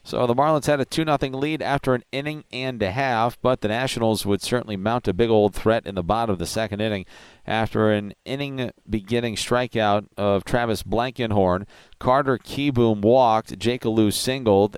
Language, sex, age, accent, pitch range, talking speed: English, male, 40-59, American, 105-130 Hz, 185 wpm